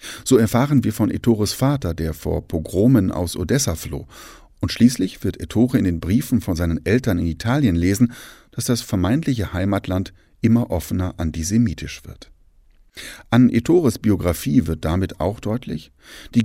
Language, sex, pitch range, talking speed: German, male, 85-115 Hz, 150 wpm